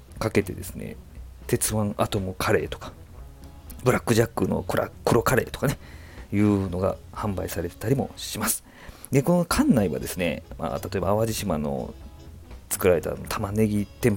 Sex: male